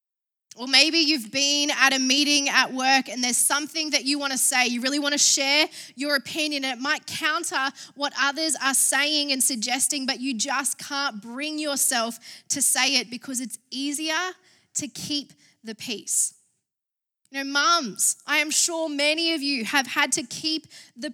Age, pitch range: 10-29, 260-300 Hz